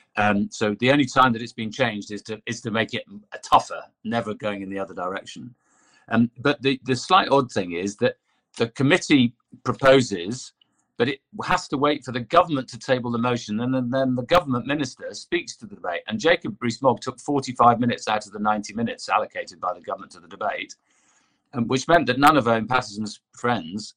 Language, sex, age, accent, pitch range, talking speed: English, male, 50-69, British, 105-130 Hz, 210 wpm